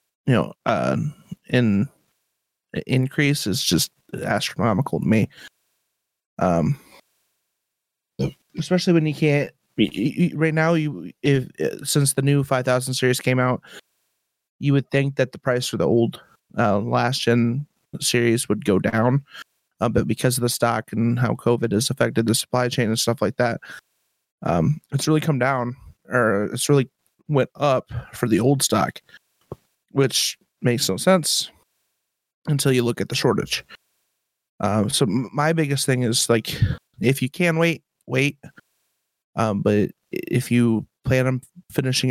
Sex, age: male, 20-39